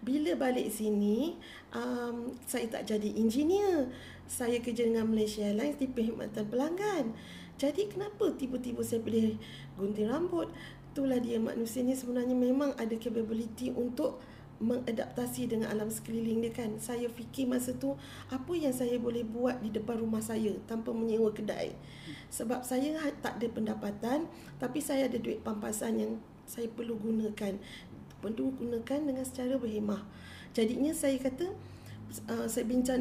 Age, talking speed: 40-59, 145 wpm